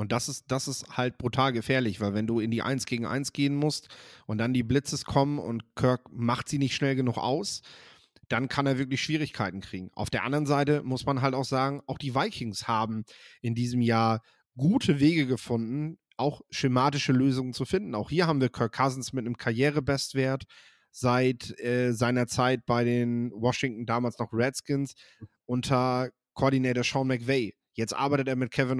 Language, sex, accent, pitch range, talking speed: German, male, German, 120-140 Hz, 185 wpm